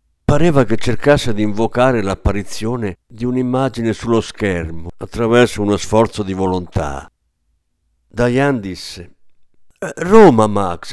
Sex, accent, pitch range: male, native, 90-130 Hz